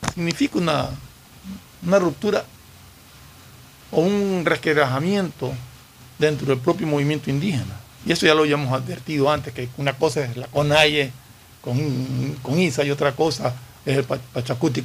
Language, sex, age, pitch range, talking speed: Spanish, male, 60-79, 130-170 Hz, 135 wpm